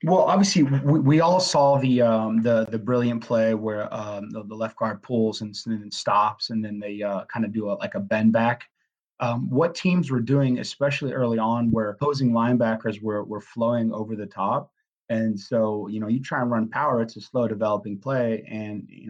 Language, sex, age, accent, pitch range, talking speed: English, male, 30-49, American, 105-120 Hz, 210 wpm